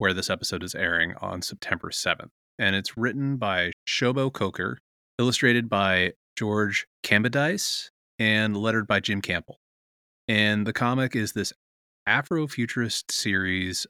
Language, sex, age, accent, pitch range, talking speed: English, male, 20-39, American, 90-115 Hz, 130 wpm